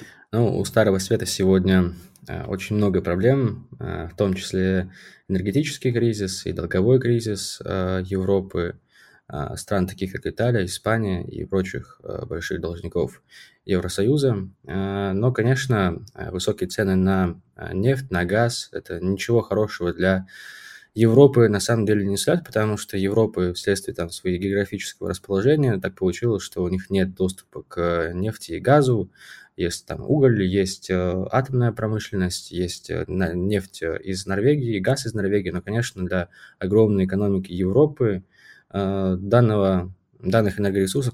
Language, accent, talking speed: Russian, native, 130 wpm